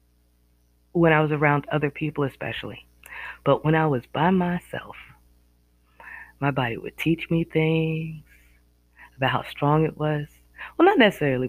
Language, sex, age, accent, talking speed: English, female, 20-39, American, 140 wpm